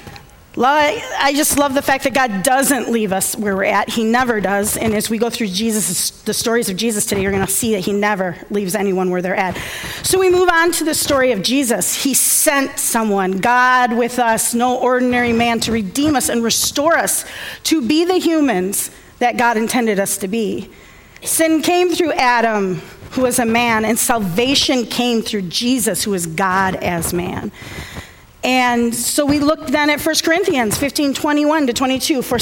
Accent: American